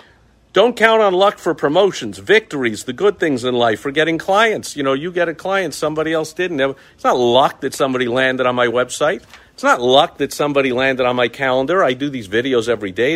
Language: English